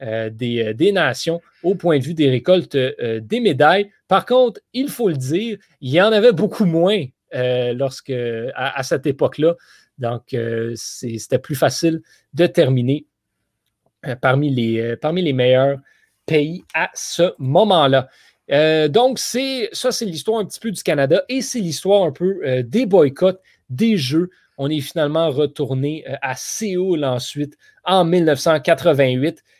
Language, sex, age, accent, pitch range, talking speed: French, male, 30-49, Canadian, 130-175 Hz, 165 wpm